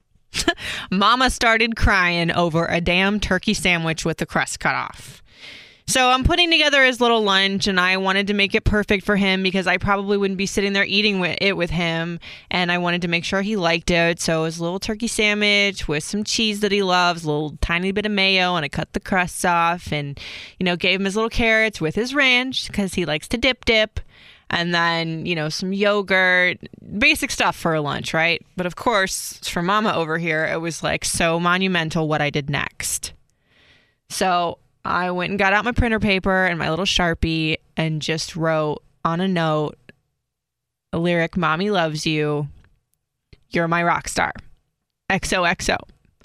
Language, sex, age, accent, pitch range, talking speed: English, female, 20-39, American, 165-205 Hz, 190 wpm